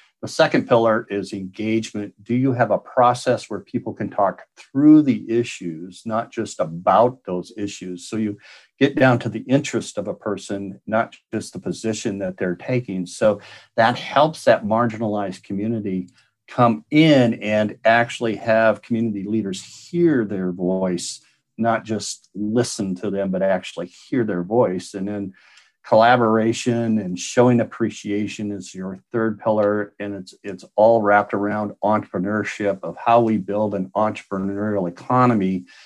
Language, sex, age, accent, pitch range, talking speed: English, male, 50-69, American, 100-115 Hz, 150 wpm